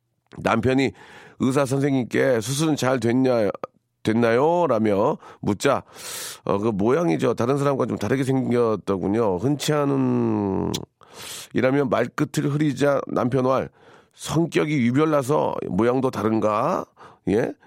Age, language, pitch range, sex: 40-59, Korean, 105-135 Hz, male